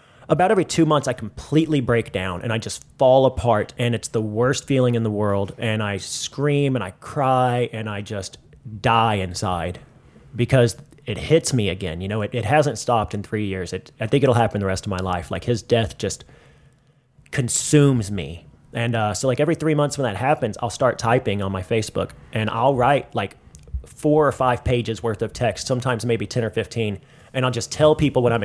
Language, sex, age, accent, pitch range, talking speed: English, male, 30-49, American, 105-130 Hz, 215 wpm